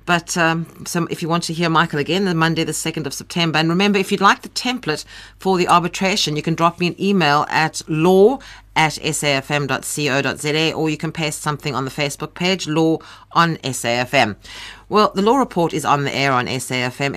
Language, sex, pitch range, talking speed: English, female, 130-175 Hz, 205 wpm